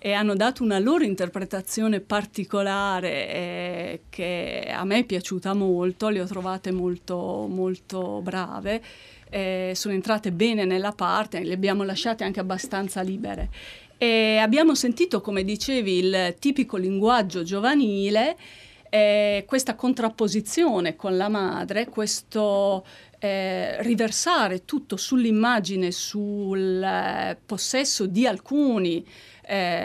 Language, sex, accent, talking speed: Italian, female, native, 115 wpm